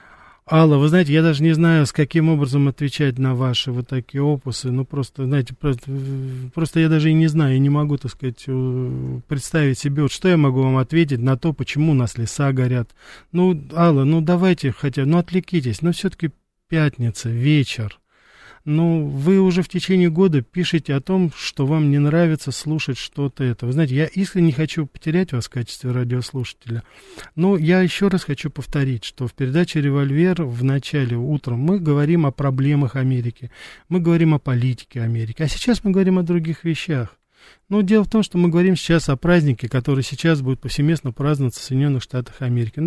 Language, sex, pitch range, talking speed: Russian, male, 130-165 Hz, 190 wpm